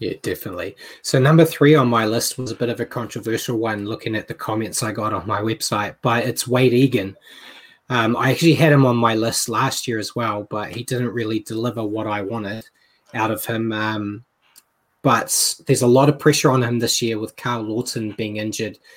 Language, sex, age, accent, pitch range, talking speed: English, male, 20-39, Australian, 110-125 Hz, 210 wpm